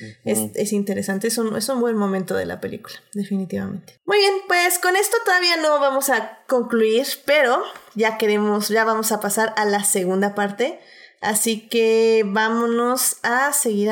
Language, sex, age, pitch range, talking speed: Spanish, female, 20-39, 205-260 Hz, 170 wpm